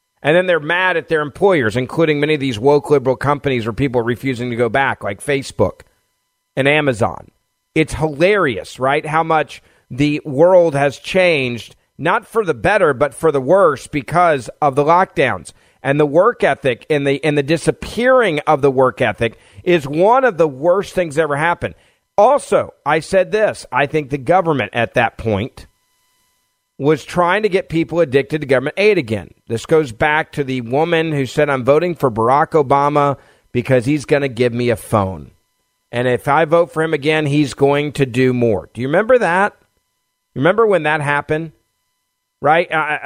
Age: 40-59